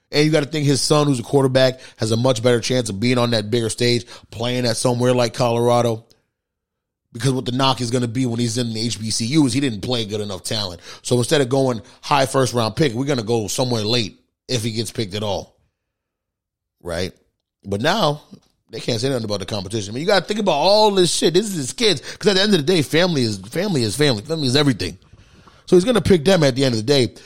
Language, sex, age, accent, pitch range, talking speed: English, male, 30-49, American, 110-145 Hz, 260 wpm